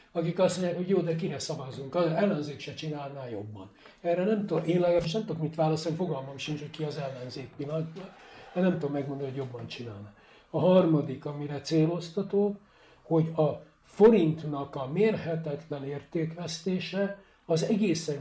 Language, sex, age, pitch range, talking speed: Hungarian, male, 60-79, 140-175 Hz, 160 wpm